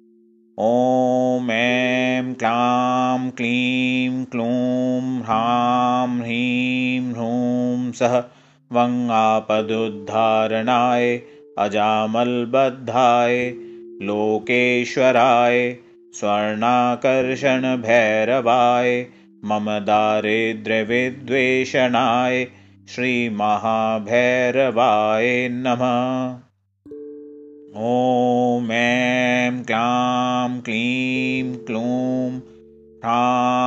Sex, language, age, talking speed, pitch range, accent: male, Hindi, 30-49, 35 wpm, 115-125 Hz, native